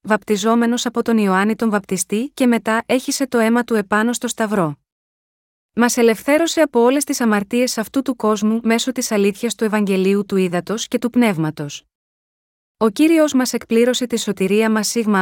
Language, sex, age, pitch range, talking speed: Greek, female, 30-49, 200-245 Hz, 165 wpm